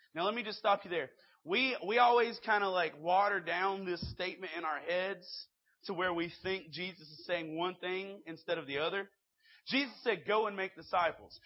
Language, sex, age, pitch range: English, male, 30-49, 170-210 Hz